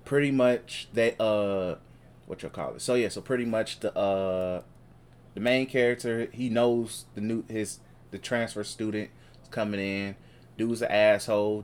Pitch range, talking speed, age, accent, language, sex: 90-115 Hz, 160 wpm, 20-39, American, English, male